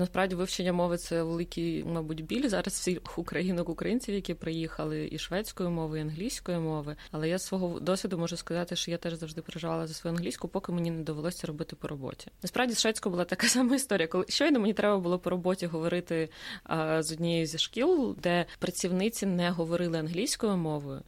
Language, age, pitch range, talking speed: Ukrainian, 20-39, 165-195 Hz, 180 wpm